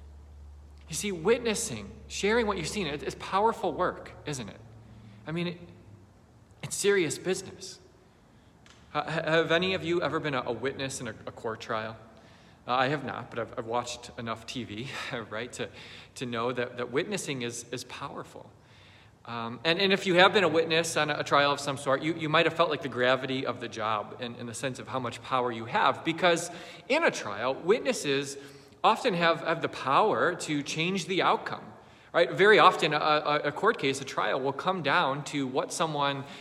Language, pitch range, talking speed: English, 125-175 Hz, 190 wpm